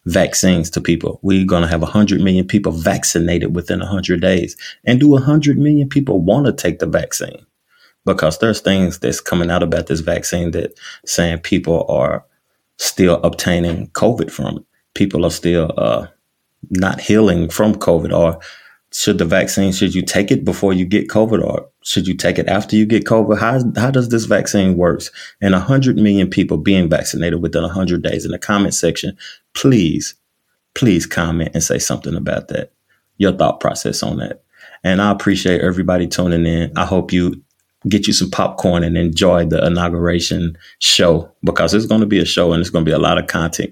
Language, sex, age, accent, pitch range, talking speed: English, male, 30-49, American, 85-105 Hz, 185 wpm